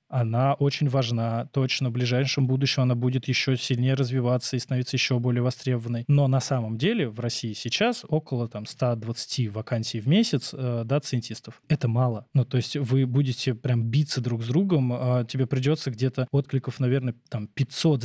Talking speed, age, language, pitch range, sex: 175 wpm, 20-39, Russian, 120-140 Hz, male